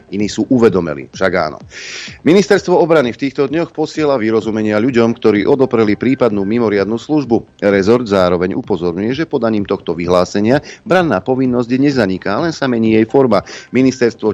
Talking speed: 140 wpm